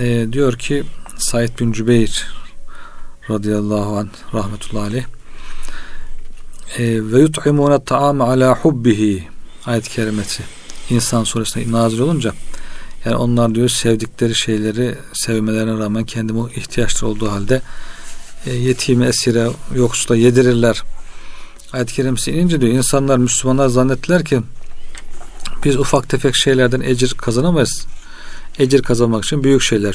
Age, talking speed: 40-59, 110 wpm